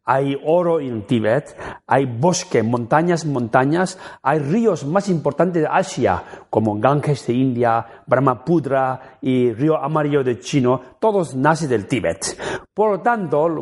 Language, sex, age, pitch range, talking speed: Spanish, male, 40-59, 115-160 Hz, 140 wpm